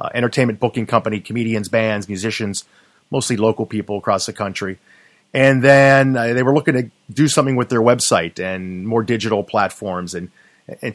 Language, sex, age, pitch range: English, male, 30-49, 105-135 Hz